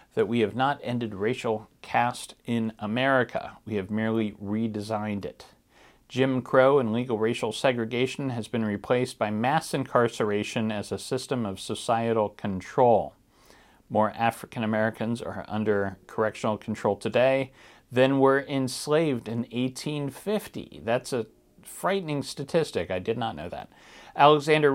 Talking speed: 130 wpm